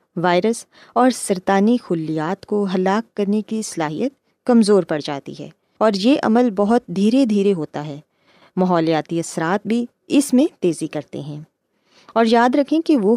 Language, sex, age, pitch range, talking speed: Urdu, female, 20-39, 185-260 Hz, 155 wpm